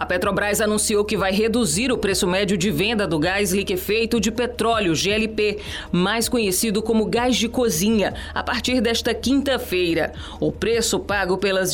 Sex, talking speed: female, 160 wpm